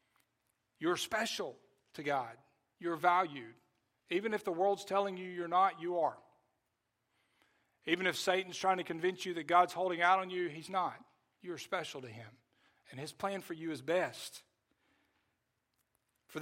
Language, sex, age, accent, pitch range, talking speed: English, male, 50-69, American, 140-180 Hz, 155 wpm